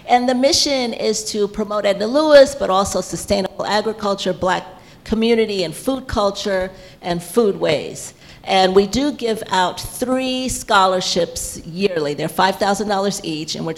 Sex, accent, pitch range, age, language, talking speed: female, American, 170-210 Hz, 40-59, English, 145 wpm